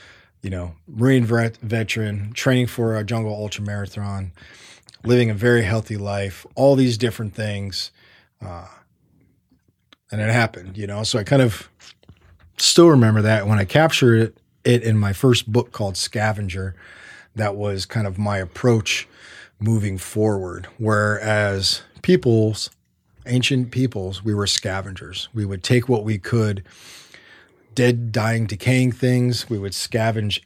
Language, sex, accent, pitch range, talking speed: English, male, American, 100-120 Hz, 140 wpm